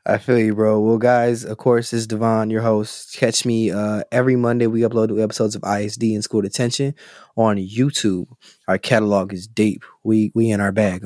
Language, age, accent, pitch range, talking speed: English, 20-39, American, 105-120 Hz, 200 wpm